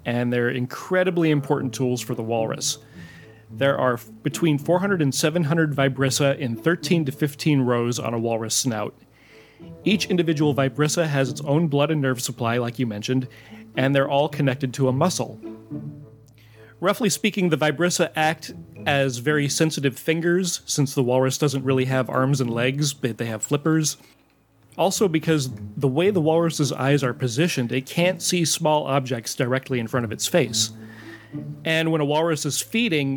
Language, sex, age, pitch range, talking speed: English, male, 30-49, 125-155 Hz, 165 wpm